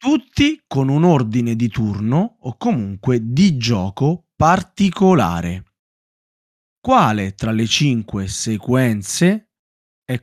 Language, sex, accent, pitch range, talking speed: Italian, male, native, 110-175 Hz, 100 wpm